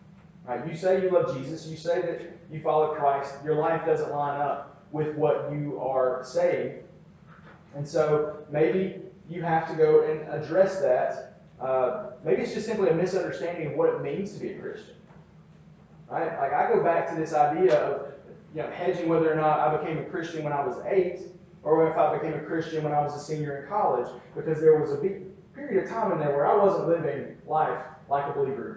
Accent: American